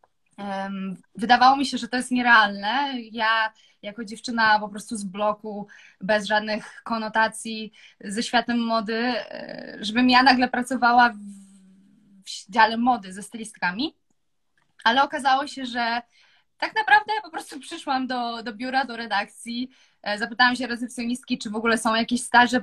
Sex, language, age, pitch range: female, Polish, 20-39, 220-255 Hz